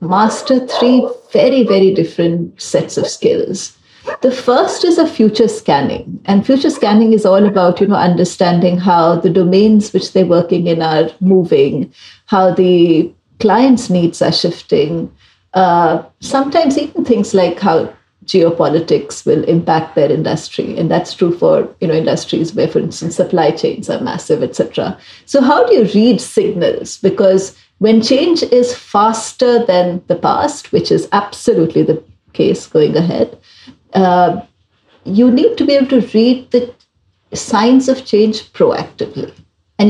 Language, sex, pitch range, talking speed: English, female, 180-255 Hz, 150 wpm